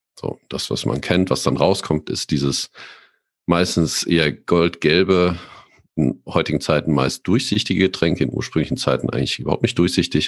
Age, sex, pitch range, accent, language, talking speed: 50-69, male, 75-90 Hz, German, German, 150 wpm